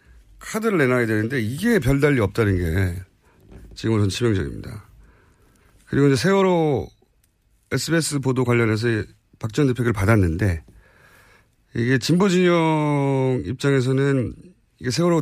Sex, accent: male, native